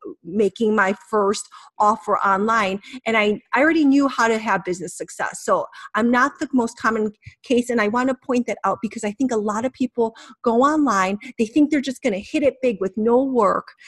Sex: female